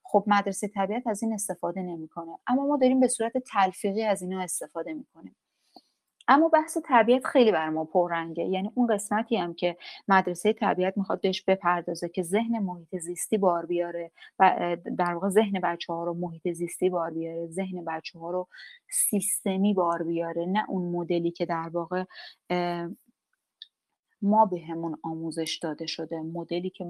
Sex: female